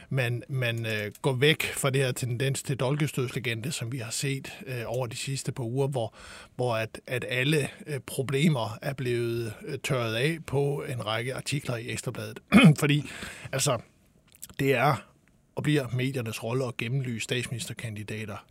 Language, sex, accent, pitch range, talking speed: Danish, male, native, 120-140 Hz, 150 wpm